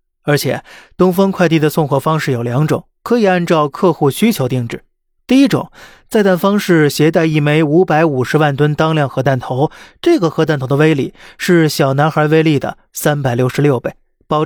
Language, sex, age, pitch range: Chinese, male, 20-39, 140-175 Hz